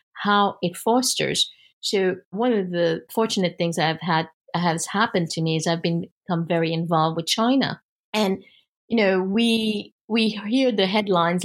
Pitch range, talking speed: 175-220 Hz, 160 wpm